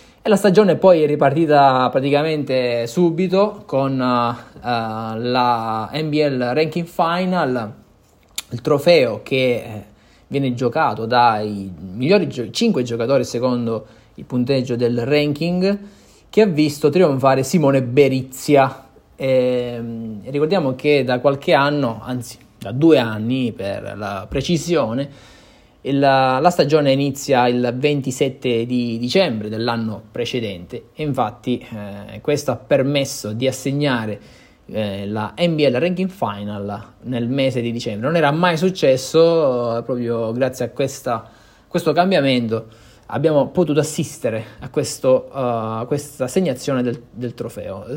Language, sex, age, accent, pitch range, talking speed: Italian, male, 20-39, native, 115-150 Hz, 120 wpm